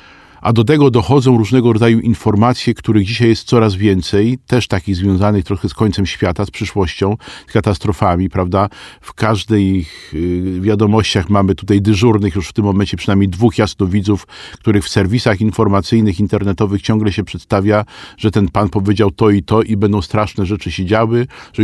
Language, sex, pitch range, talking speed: Polish, male, 100-120 Hz, 165 wpm